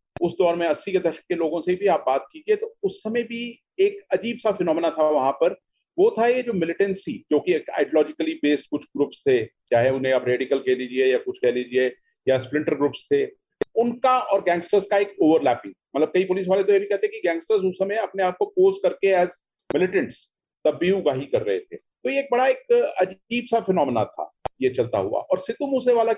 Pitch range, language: 160-235 Hz, Hindi